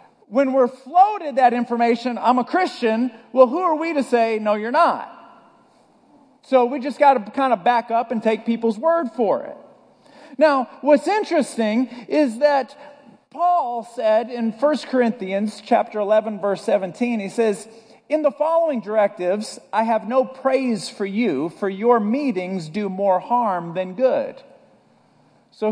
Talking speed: 155 wpm